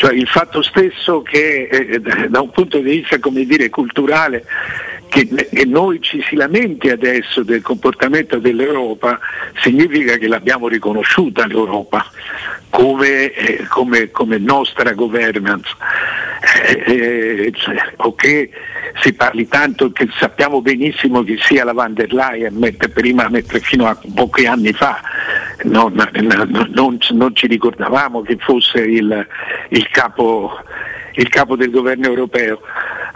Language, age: Italian, 60-79